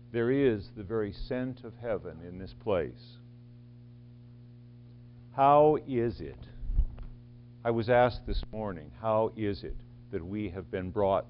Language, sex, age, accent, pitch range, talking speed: English, male, 60-79, American, 115-125 Hz, 140 wpm